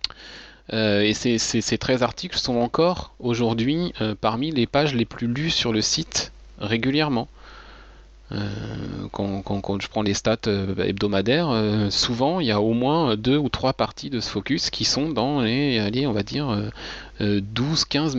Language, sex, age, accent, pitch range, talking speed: French, male, 30-49, French, 100-130 Hz, 170 wpm